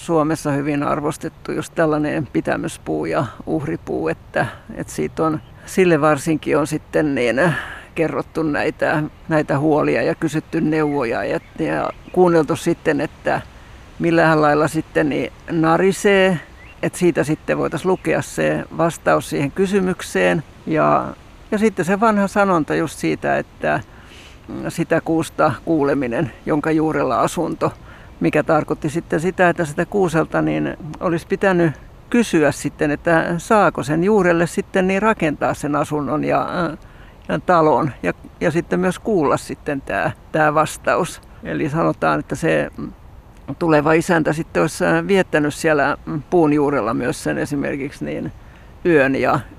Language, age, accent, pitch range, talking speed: Finnish, 60-79, native, 150-175 Hz, 130 wpm